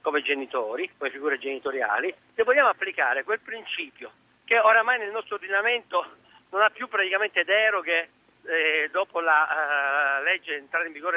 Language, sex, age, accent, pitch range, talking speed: Italian, male, 50-69, native, 170-270 Hz, 150 wpm